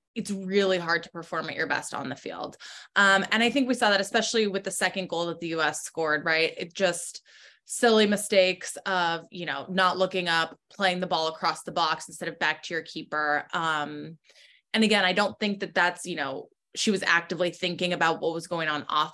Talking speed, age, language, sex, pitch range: 225 wpm, 20-39, English, female, 170-205 Hz